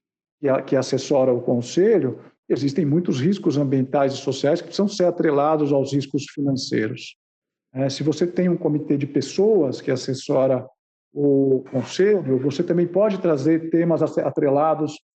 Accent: Brazilian